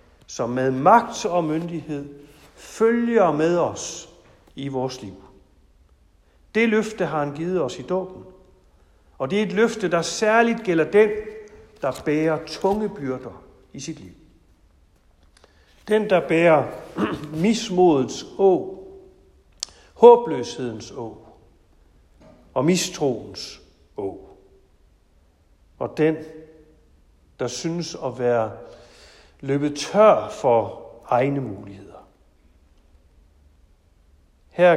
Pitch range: 115-195 Hz